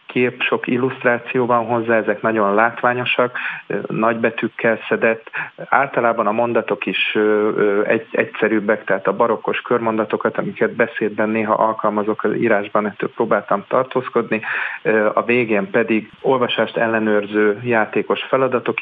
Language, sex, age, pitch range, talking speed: Hungarian, male, 40-59, 105-120 Hz, 120 wpm